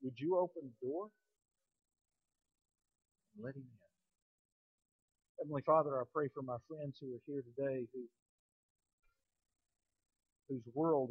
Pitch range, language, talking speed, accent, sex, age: 130-180 Hz, English, 120 wpm, American, male, 50-69